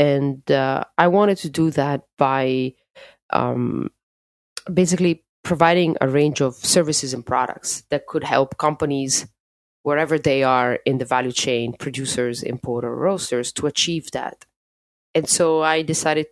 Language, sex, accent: English, female, Italian